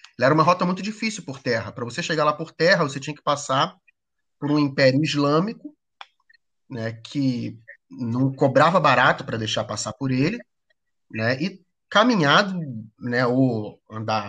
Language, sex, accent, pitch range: Portuguese, male, Brazilian, 115-150 Hz